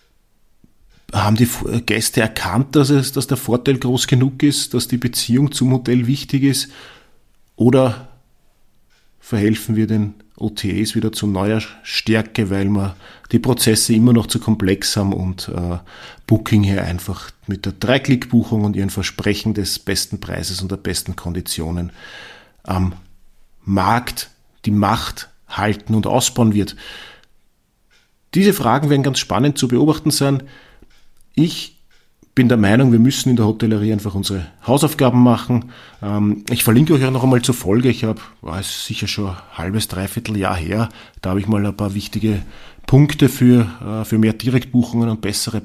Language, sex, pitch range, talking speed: German, male, 105-125 Hz, 150 wpm